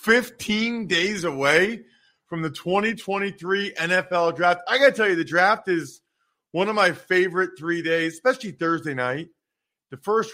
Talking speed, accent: 155 wpm, American